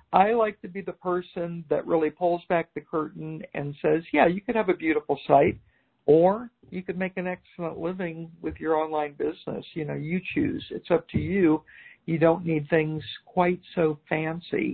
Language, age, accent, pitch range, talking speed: English, 60-79, American, 155-195 Hz, 190 wpm